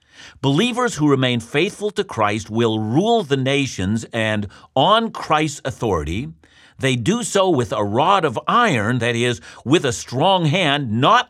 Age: 50-69